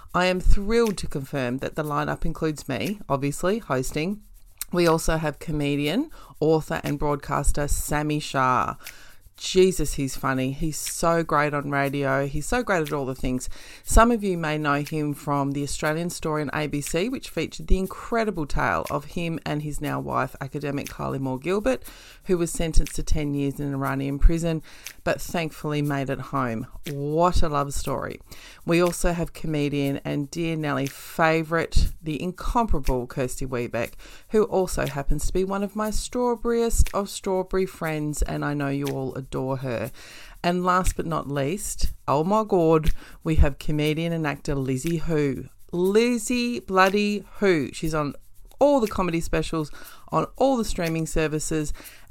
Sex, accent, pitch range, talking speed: female, Australian, 140-180 Hz, 160 wpm